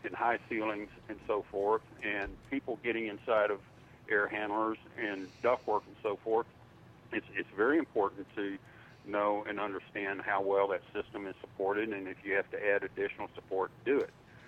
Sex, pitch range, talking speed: male, 100-120 Hz, 180 wpm